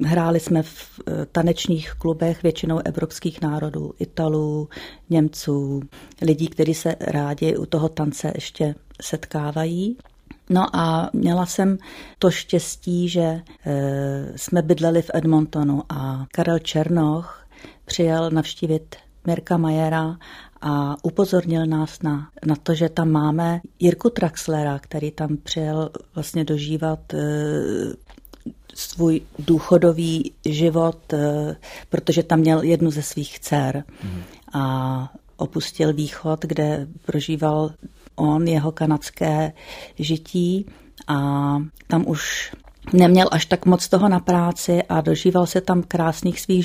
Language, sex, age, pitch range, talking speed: Czech, female, 40-59, 150-170 Hz, 115 wpm